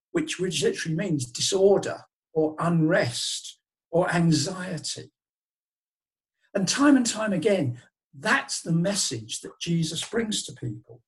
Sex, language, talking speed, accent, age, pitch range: male, English, 120 wpm, British, 60-79, 150-205 Hz